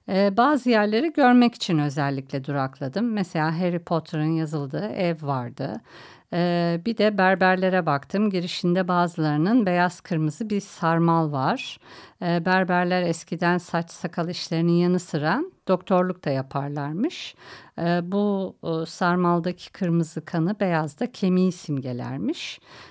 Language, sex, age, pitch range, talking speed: Turkish, female, 50-69, 160-205 Hz, 105 wpm